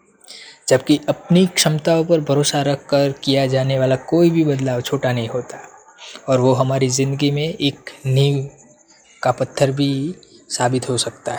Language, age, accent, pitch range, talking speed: Hindi, 20-39, native, 135-165 Hz, 150 wpm